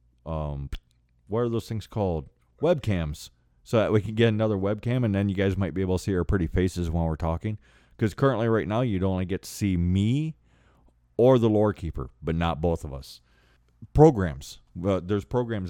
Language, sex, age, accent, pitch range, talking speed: English, male, 30-49, American, 80-105 Hz, 205 wpm